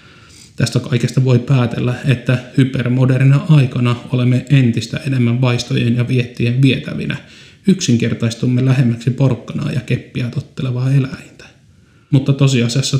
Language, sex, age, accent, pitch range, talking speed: Finnish, male, 30-49, native, 120-140 Hz, 105 wpm